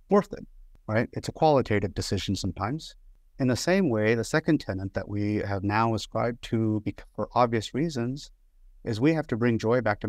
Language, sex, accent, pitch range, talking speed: English, male, American, 95-115 Hz, 190 wpm